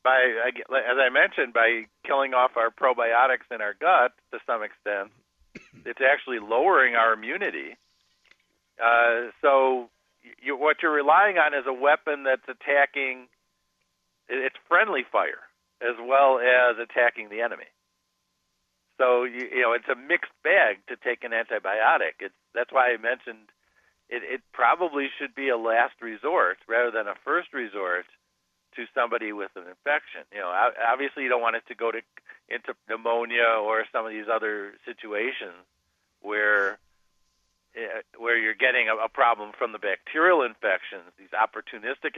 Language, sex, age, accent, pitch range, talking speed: English, male, 50-69, American, 110-130 Hz, 150 wpm